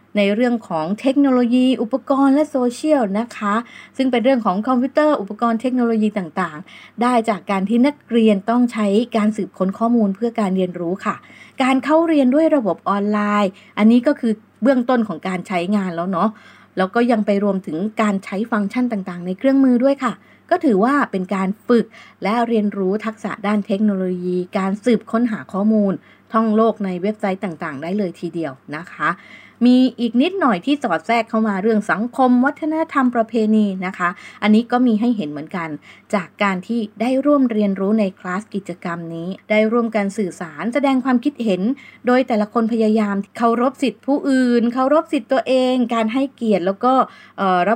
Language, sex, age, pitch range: Thai, female, 20-39, 195-245 Hz